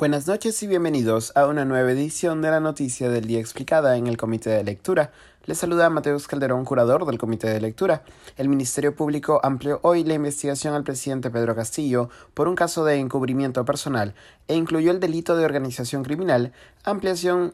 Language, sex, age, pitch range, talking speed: Spanish, male, 30-49, 120-150 Hz, 180 wpm